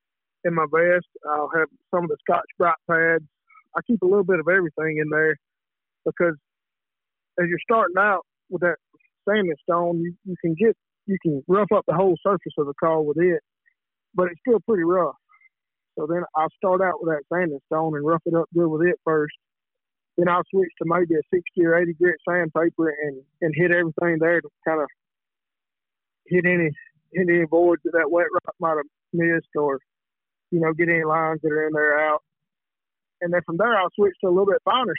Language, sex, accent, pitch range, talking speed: English, male, American, 160-185 Hz, 195 wpm